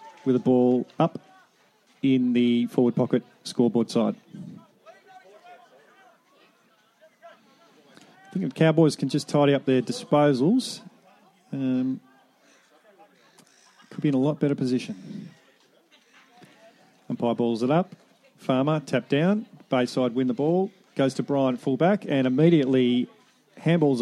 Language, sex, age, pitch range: English, male, 40-59, 135-190 Hz